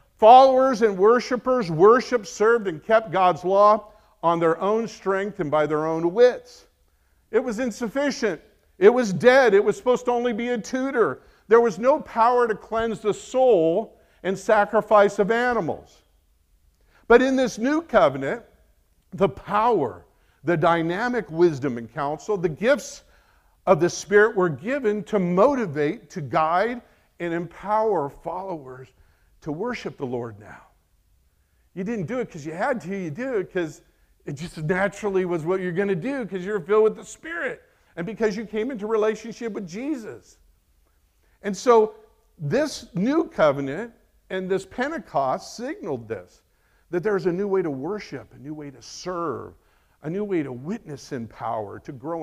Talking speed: 160 wpm